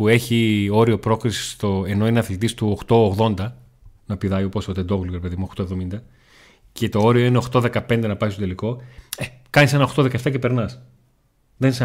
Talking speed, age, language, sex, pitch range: 165 wpm, 30-49, Greek, male, 105-135 Hz